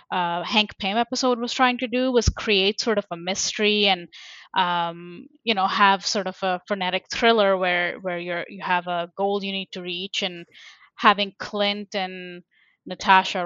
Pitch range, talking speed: 185-230 Hz, 180 wpm